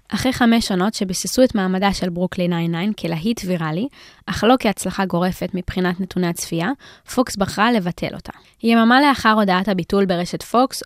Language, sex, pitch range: Hebrew, female, 185-225 Hz